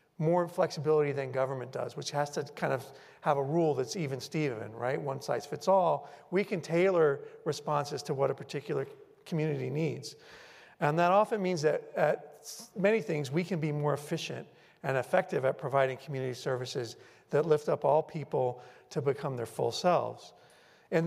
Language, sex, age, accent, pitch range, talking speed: English, male, 40-59, American, 145-185 Hz, 175 wpm